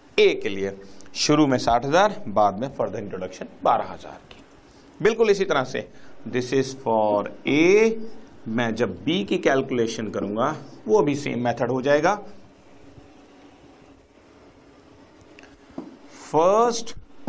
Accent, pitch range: native, 120-165 Hz